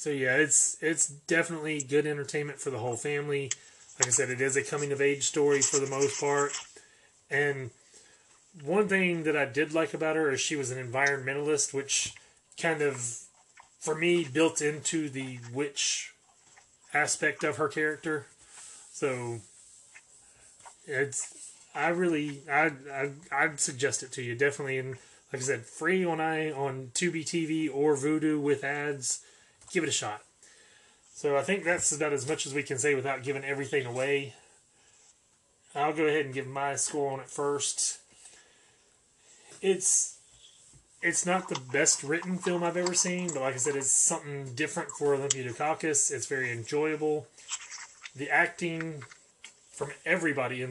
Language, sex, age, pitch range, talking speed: English, male, 30-49, 135-160 Hz, 160 wpm